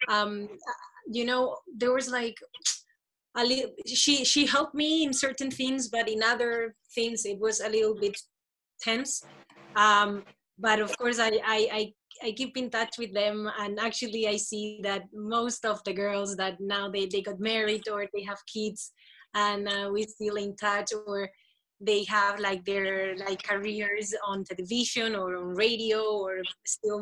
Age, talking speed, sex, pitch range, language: 20-39, 170 wpm, female, 200-230 Hz, English